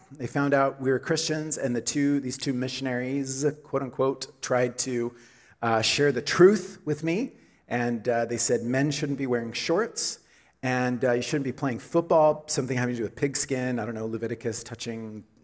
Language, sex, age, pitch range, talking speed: English, male, 40-59, 120-155 Hz, 185 wpm